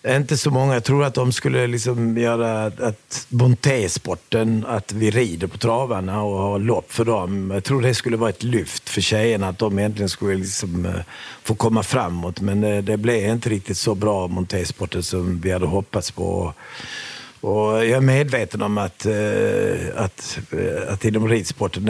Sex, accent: male, native